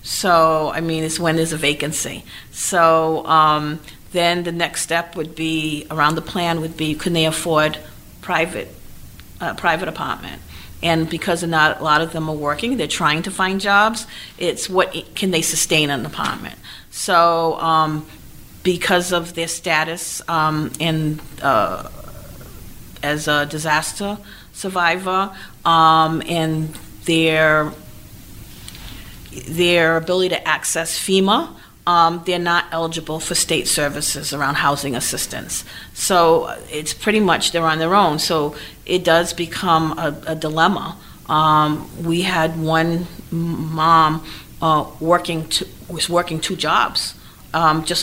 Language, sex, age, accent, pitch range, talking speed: English, female, 40-59, American, 155-170 Hz, 135 wpm